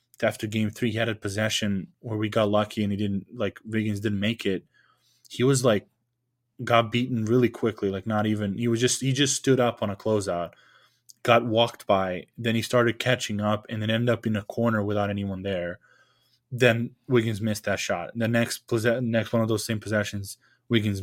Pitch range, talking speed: 105-120 Hz, 205 wpm